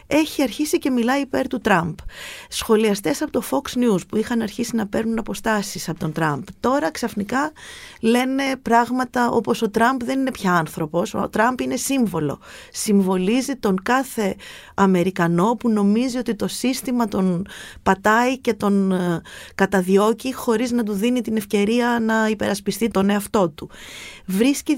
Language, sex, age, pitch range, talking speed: Greek, female, 30-49, 185-245 Hz, 150 wpm